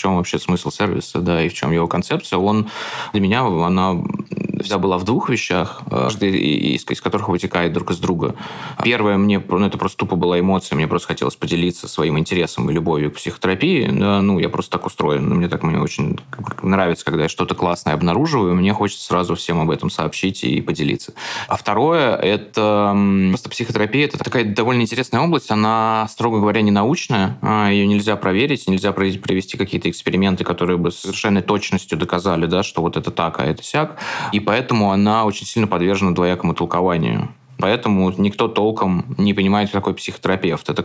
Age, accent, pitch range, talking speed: 20-39, native, 90-105 Hz, 180 wpm